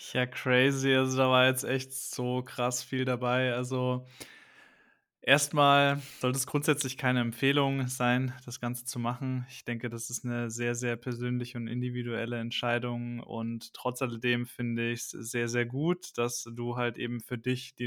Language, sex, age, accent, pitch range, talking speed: German, male, 20-39, German, 120-135 Hz, 170 wpm